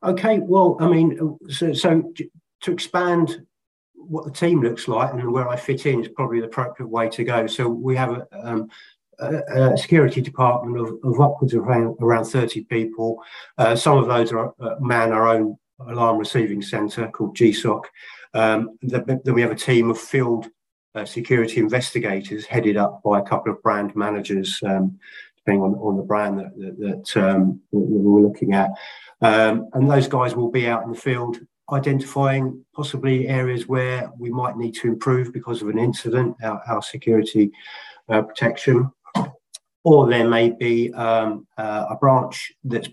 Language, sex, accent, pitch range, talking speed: English, male, British, 110-130 Hz, 175 wpm